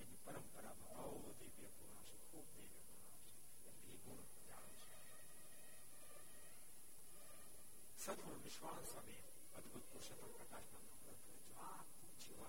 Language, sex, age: Gujarati, male, 60-79